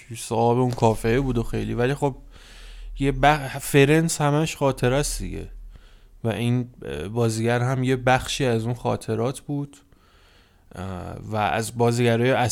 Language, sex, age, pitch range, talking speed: Persian, male, 20-39, 105-130 Hz, 130 wpm